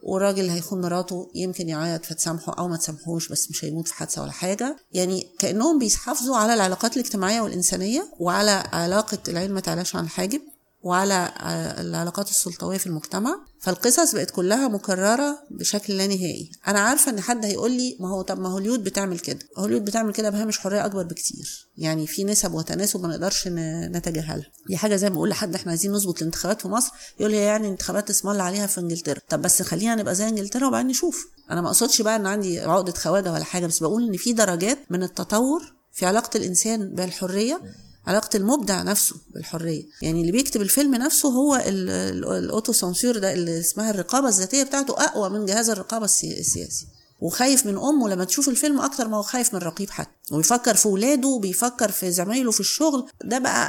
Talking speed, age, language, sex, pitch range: 180 wpm, 30-49, Arabic, female, 180-225 Hz